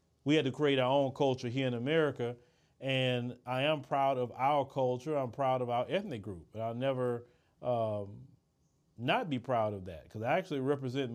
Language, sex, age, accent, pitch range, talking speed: English, male, 40-59, American, 115-145 Hz, 195 wpm